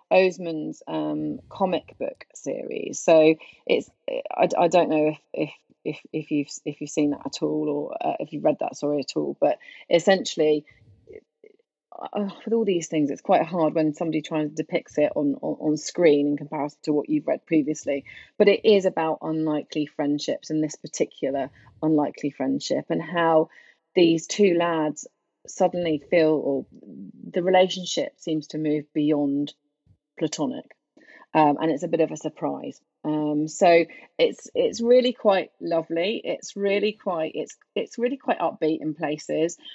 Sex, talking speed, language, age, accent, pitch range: female, 165 wpm, English, 30-49, British, 150-200 Hz